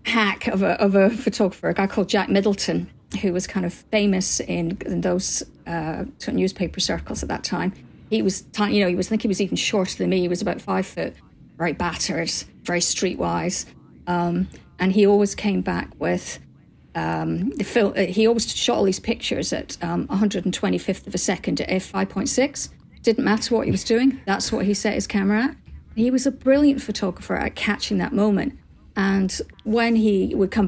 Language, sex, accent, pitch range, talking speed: English, female, British, 185-225 Hz, 190 wpm